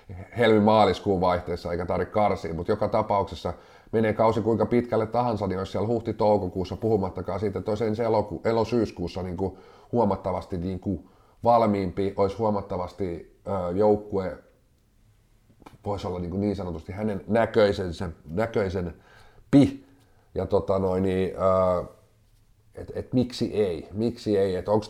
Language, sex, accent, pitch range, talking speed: Finnish, male, native, 95-110 Hz, 125 wpm